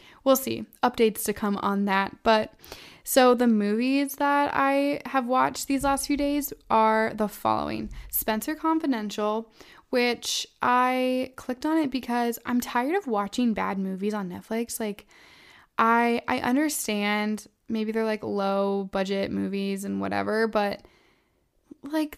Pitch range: 205-255 Hz